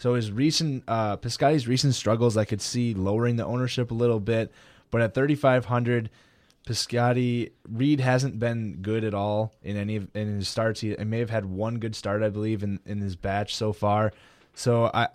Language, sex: English, male